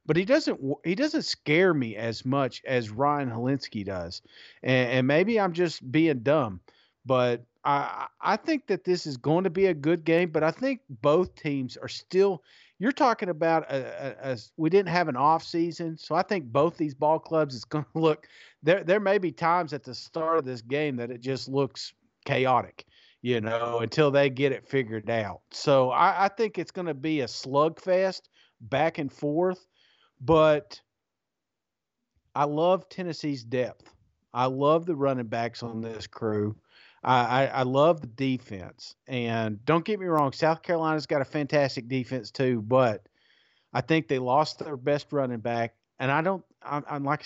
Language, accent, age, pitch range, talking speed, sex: English, American, 40-59, 125-165 Hz, 190 wpm, male